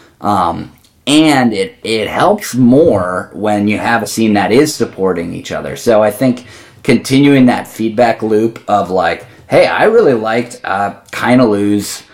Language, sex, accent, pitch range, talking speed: English, male, American, 100-120 Hz, 160 wpm